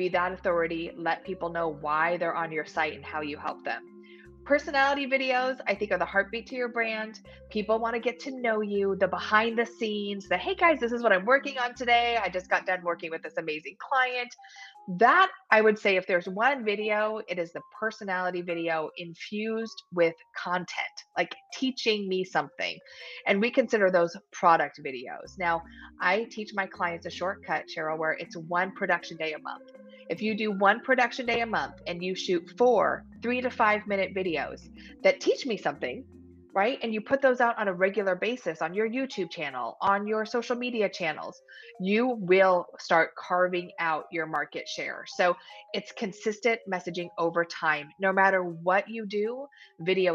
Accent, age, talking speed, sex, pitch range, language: American, 20-39, 190 wpm, female, 175-230 Hz, English